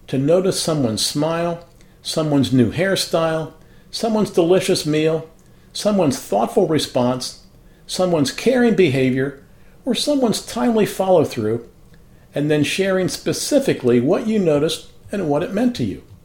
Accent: American